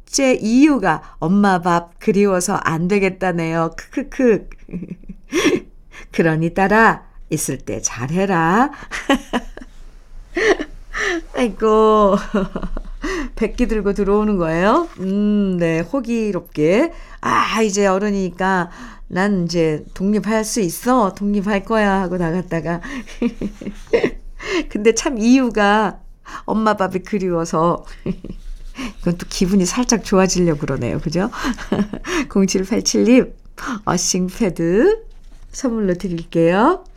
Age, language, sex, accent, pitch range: 50-69, Korean, female, native, 165-225 Hz